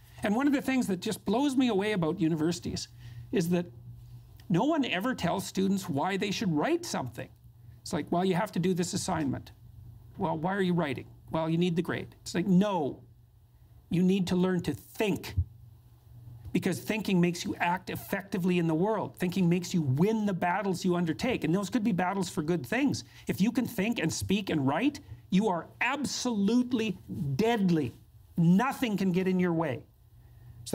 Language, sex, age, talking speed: English, male, 50-69, 185 wpm